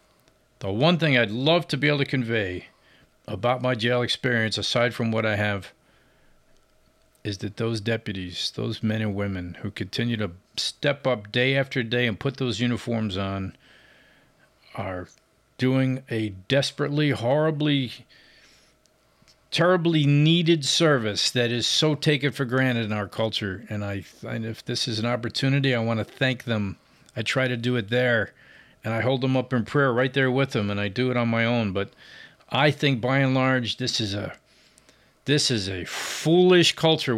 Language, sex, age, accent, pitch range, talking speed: English, male, 50-69, American, 105-135 Hz, 175 wpm